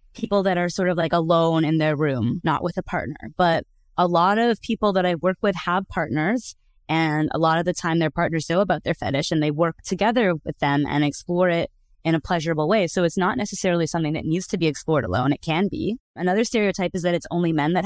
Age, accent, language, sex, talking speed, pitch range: 20-39, American, English, female, 240 wpm, 160-195 Hz